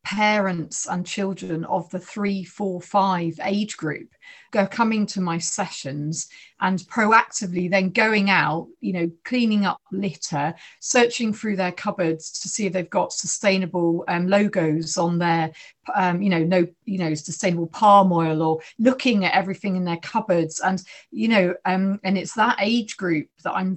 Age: 40-59